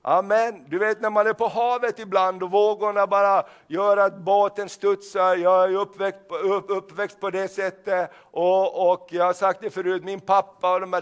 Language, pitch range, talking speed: Swedish, 195-225 Hz, 195 wpm